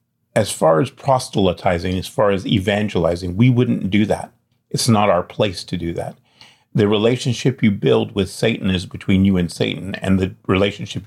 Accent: American